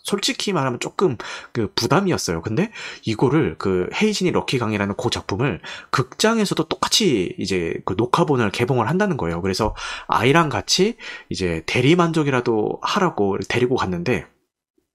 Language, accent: Korean, native